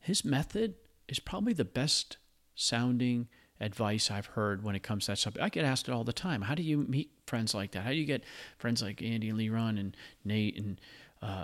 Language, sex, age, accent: English, male, 40-59, American